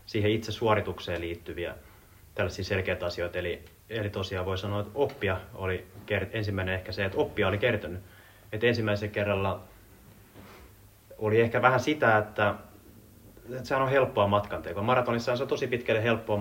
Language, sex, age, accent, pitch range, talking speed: Finnish, male, 30-49, native, 90-105 Hz, 155 wpm